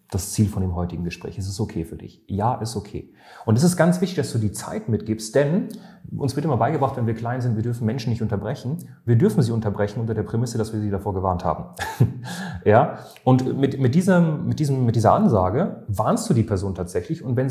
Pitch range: 105-140 Hz